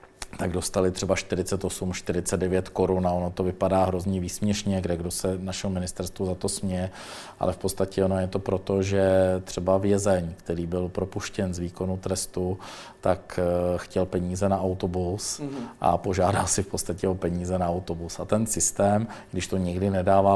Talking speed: 170 wpm